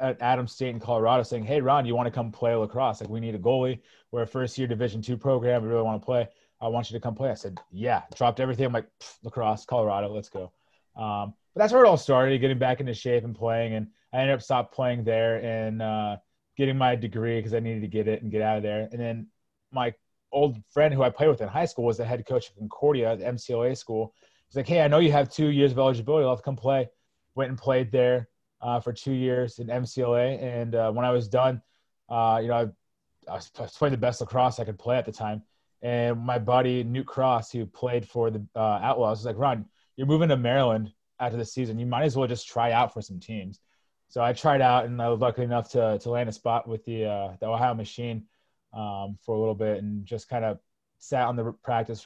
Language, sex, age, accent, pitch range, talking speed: English, male, 20-39, American, 110-125 Hz, 250 wpm